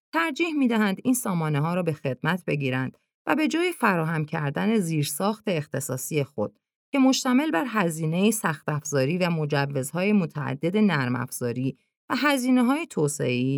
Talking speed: 140 wpm